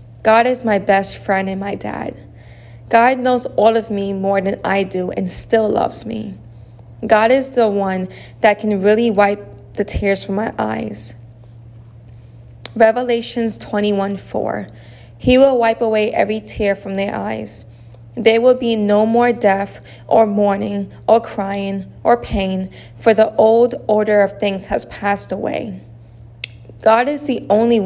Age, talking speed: 20-39, 155 wpm